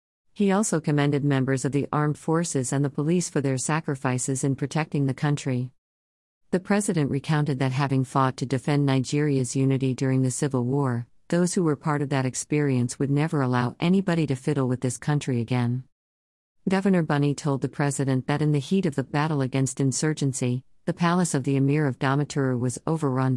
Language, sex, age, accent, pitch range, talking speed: English, female, 50-69, American, 130-155 Hz, 185 wpm